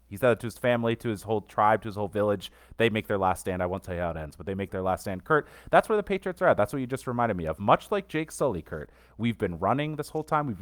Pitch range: 95-135 Hz